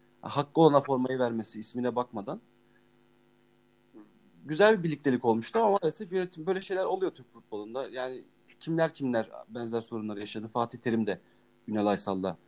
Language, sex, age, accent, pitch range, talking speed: Turkish, male, 40-59, native, 130-180 Hz, 140 wpm